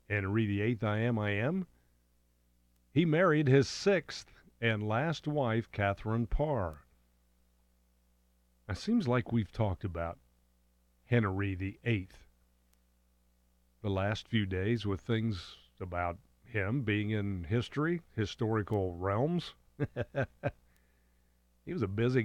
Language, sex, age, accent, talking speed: English, male, 50-69, American, 110 wpm